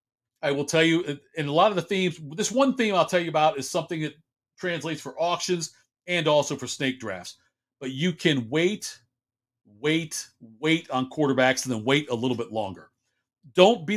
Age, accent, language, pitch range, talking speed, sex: 40-59, American, English, 130-175 Hz, 195 wpm, male